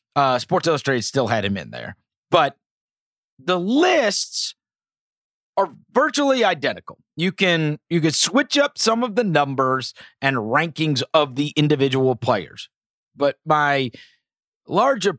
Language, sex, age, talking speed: English, male, 30-49, 130 wpm